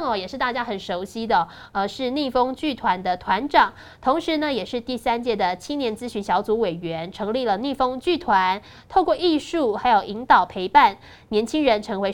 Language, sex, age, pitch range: Chinese, female, 20-39, 195-265 Hz